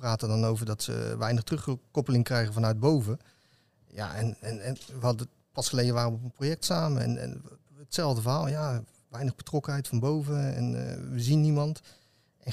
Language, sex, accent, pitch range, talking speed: Dutch, male, Dutch, 115-145 Hz, 185 wpm